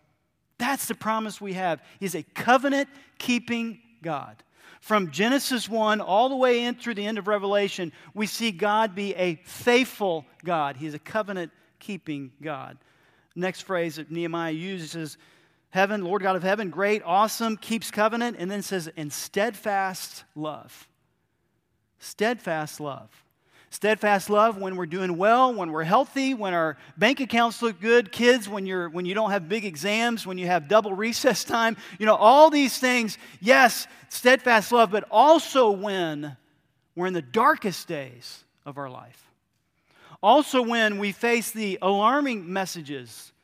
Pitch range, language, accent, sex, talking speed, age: 170-230 Hz, English, American, male, 150 wpm, 40-59